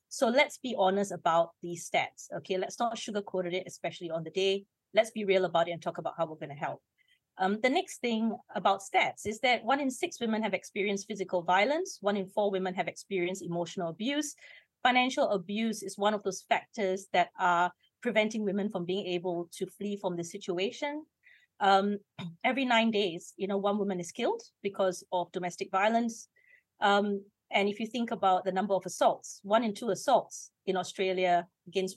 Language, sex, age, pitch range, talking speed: English, female, 30-49, 180-225 Hz, 190 wpm